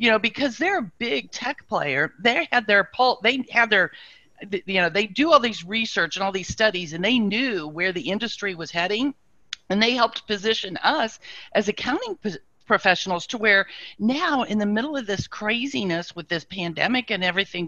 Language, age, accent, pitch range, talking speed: English, 50-69, American, 185-240 Hz, 195 wpm